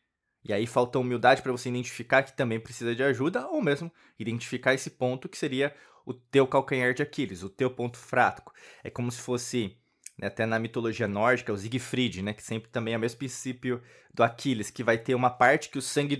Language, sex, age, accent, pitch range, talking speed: Portuguese, male, 20-39, Brazilian, 120-150 Hz, 215 wpm